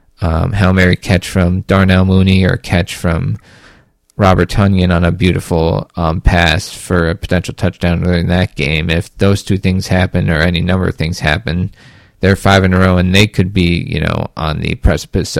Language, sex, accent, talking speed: English, male, American, 190 wpm